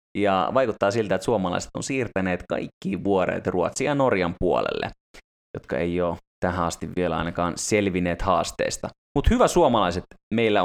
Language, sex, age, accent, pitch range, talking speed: Finnish, male, 20-39, native, 80-105 Hz, 145 wpm